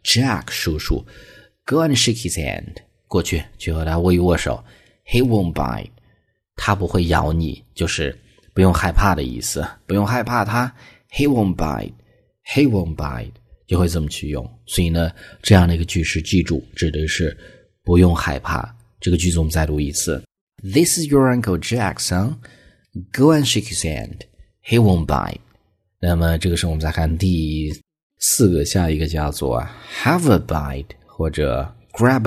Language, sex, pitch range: Chinese, male, 80-115 Hz